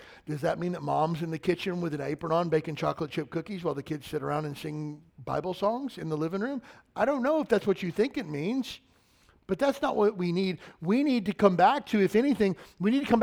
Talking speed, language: 260 wpm, English